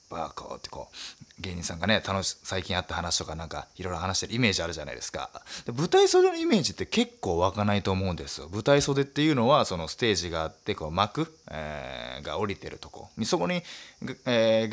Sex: male